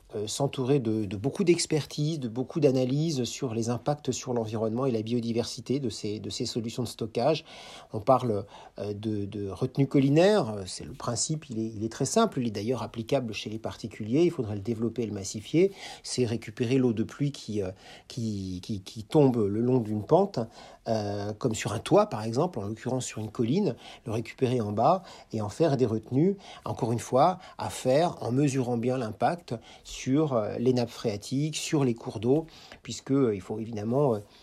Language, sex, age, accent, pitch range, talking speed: French, male, 50-69, French, 110-140 Hz, 195 wpm